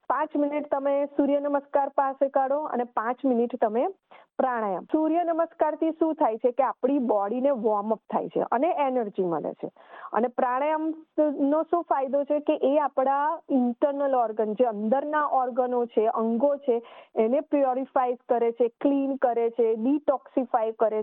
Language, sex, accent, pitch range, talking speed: Gujarati, female, native, 245-290 Hz, 150 wpm